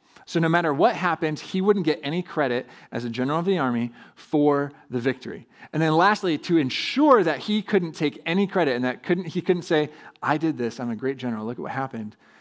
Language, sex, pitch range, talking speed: English, male, 120-165 Hz, 225 wpm